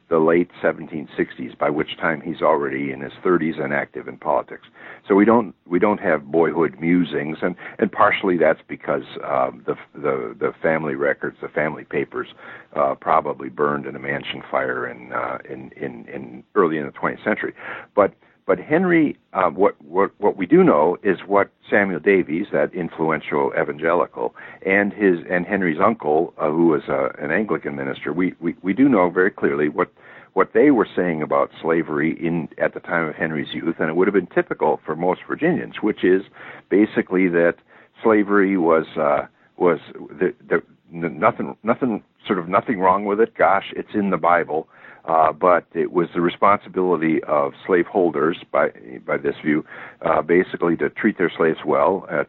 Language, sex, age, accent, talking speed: English, male, 60-79, American, 180 wpm